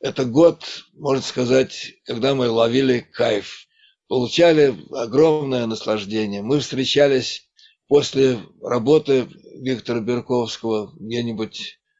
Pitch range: 115-145 Hz